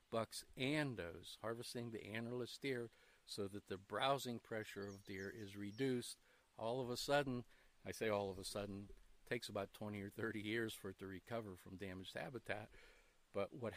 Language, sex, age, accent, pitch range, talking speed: English, male, 50-69, American, 105-130 Hz, 185 wpm